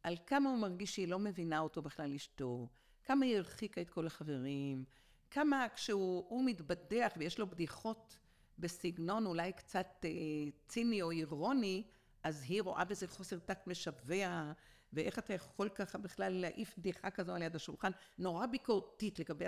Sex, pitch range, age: female, 165-230 Hz, 50-69